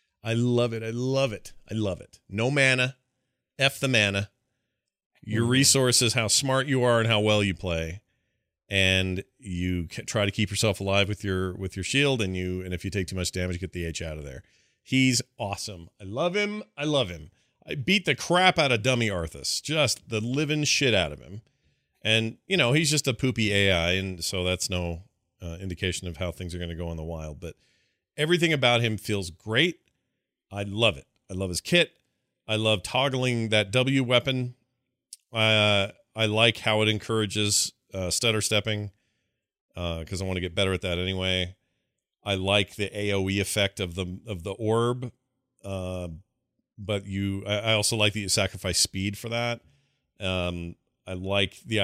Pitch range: 95-120 Hz